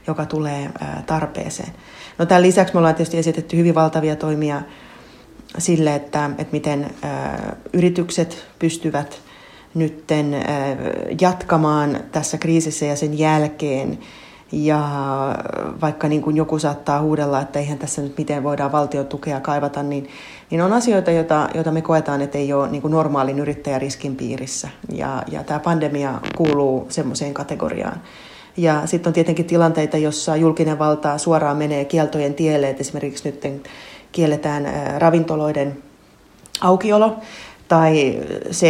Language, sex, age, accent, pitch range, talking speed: Finnish, female, 30-49, native, 145-165 Hz, 130 wpm